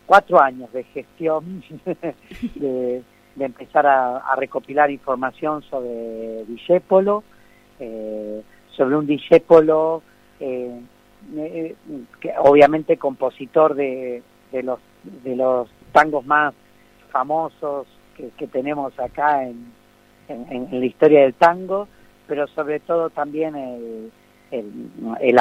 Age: 40-59